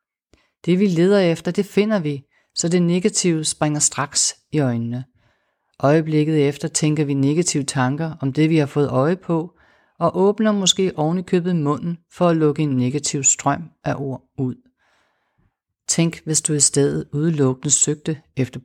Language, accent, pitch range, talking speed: Danish, native, 135-165 Hz, 160 wpm